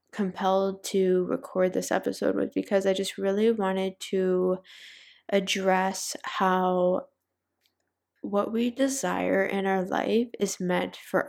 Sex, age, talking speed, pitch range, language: female, 10-29, 120 wpm, 180-200 Hz, English